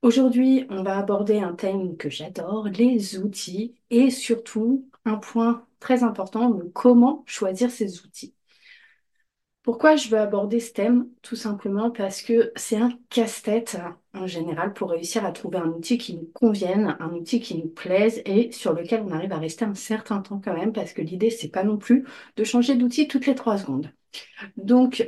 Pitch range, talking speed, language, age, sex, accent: 190-235 Hz, 185 wpm, French, 30-49, female, French